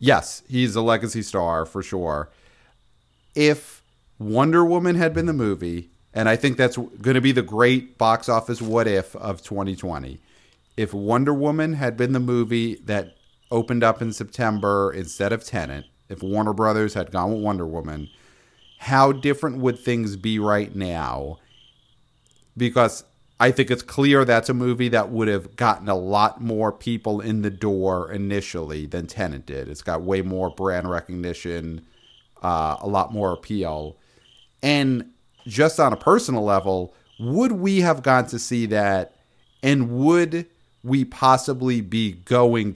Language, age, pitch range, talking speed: English, 40-59, 95-125 Hz, 155 wpm